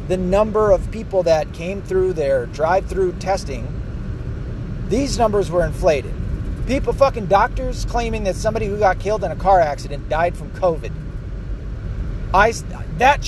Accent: American